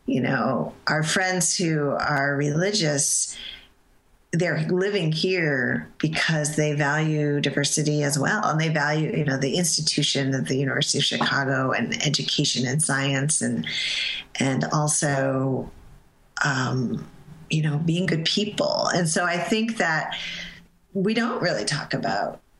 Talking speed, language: 135 wpm, English